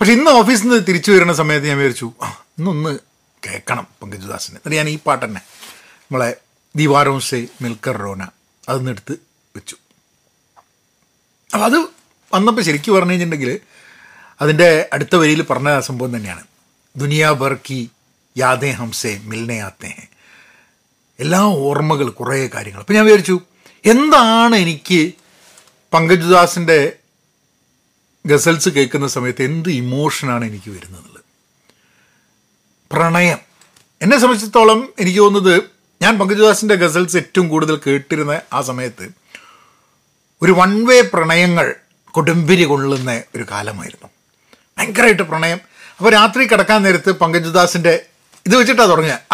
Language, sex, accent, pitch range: Malayalam, male, native, 140-195 Hz